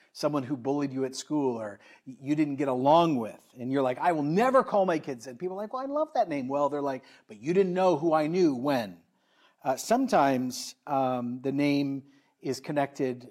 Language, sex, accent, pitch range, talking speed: English, male, American, 135-180 Hz, 215 wpm